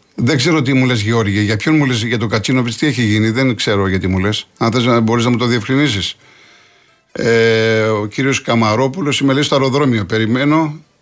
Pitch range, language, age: 115-135 Hz, Greek, 50-69